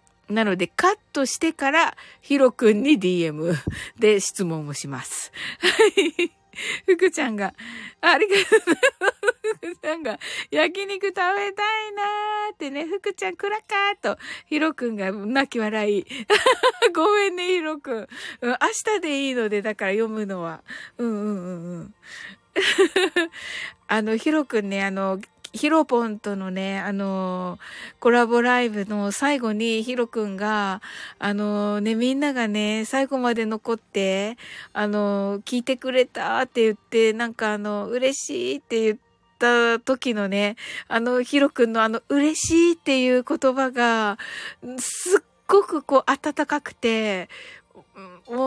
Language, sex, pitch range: Japanese, female, 215-315 Hz